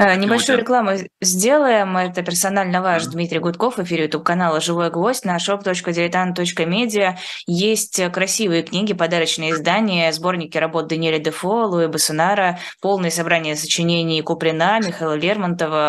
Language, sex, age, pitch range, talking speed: Russian, female, 20-39, 160-185 Hz, 120 wpm